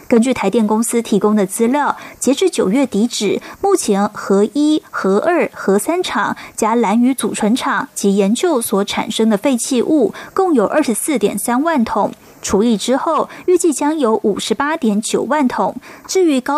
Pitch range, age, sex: 210-275 Hz, 20-39, female